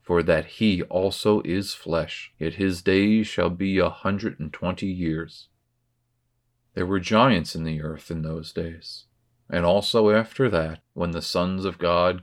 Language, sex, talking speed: English, male, 165 wpm